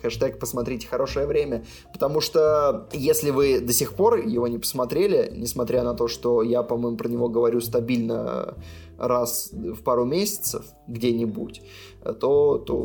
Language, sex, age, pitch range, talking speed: Russian, male, 20-39, 120-170 Hz, 145 wpm